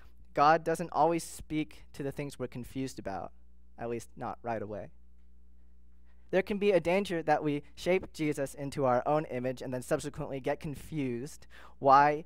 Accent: American